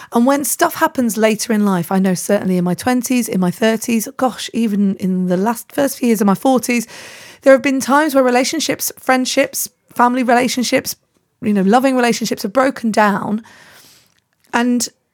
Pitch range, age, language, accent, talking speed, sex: 195-250 Hz, 30-49, English, British, 175 wpm, female